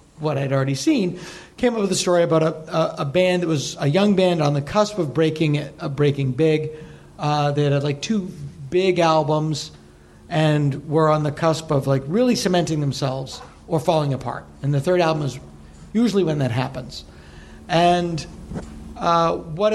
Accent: American